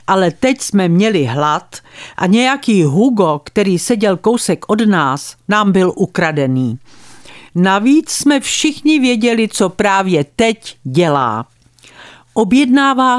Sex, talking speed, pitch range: female, 115 wpm, 140-230 Hz